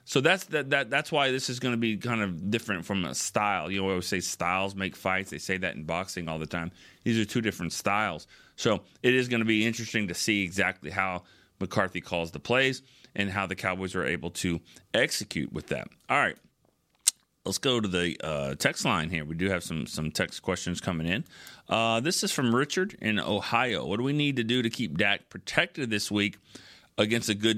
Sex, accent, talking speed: male, American, 225 wpm